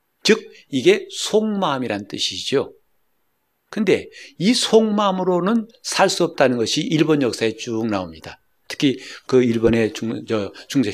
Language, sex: Korean, male